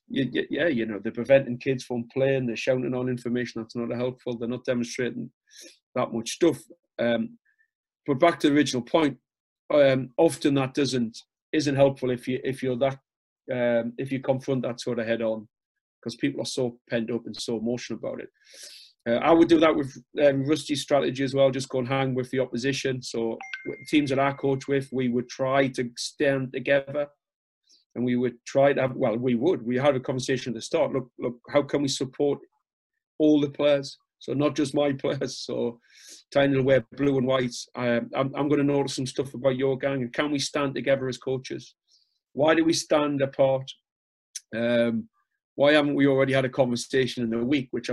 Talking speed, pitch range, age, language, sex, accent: 200 wpm, 120-140 Hz, 30-49, English, male, British